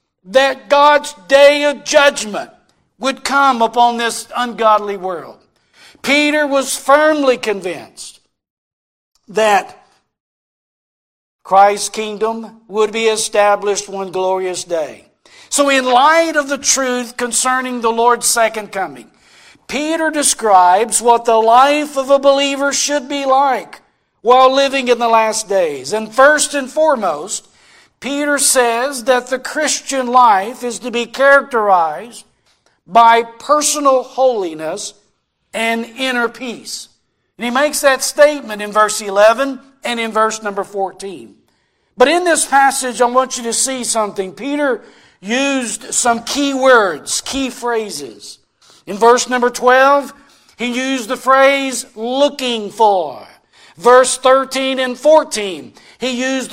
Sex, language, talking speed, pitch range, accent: male, English, 125 wpm, 225-275 Hz, American